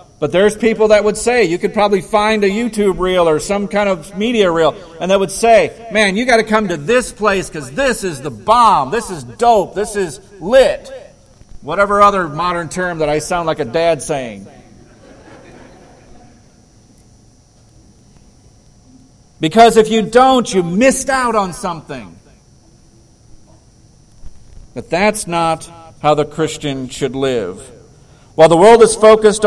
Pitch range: 160-215 Hz